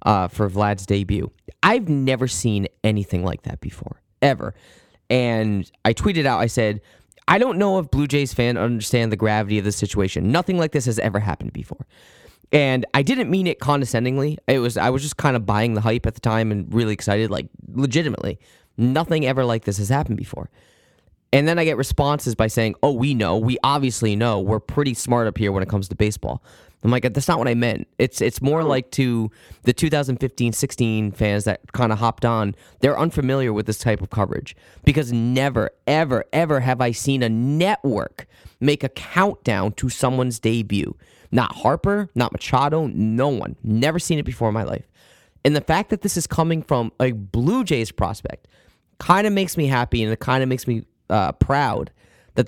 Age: 20-39